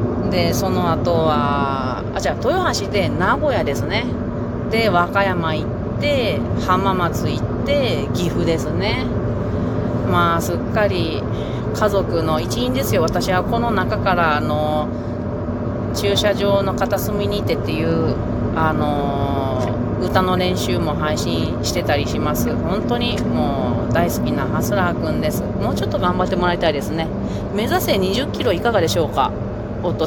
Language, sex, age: Japanese, female, 30-49